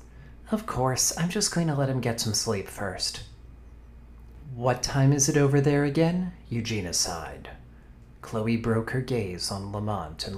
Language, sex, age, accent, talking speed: English, male, 40-59, American, 160 wpm